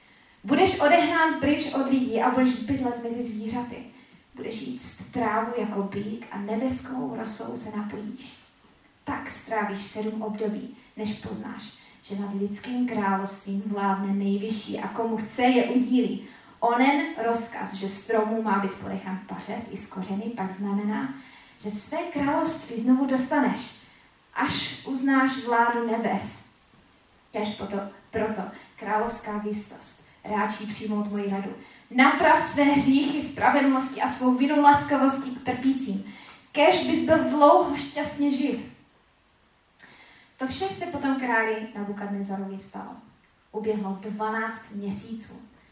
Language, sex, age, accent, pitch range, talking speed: Czech, female, 20-39, native, 210-260 Hz, 125 wpm